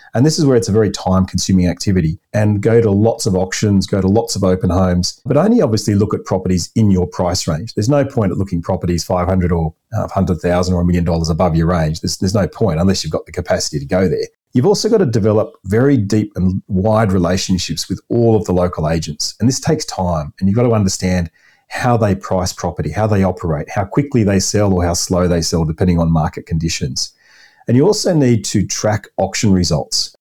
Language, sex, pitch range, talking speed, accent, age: English, male, 85-110 Hz, 225 wpm, Australian, 40-59